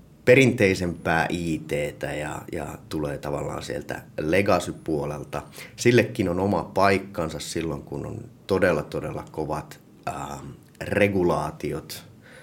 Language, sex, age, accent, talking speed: Finnish, male, 30-49, native, 95 wpm